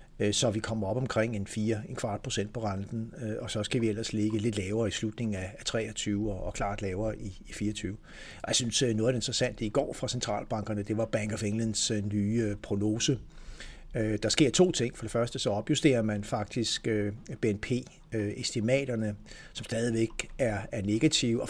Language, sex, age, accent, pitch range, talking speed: Danish, male, 60-79, native, 105-120 Hz, 180 wpm